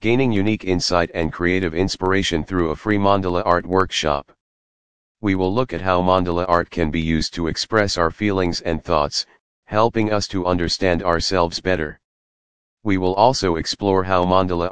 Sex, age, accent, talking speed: male, 40-59, American, 165 wpm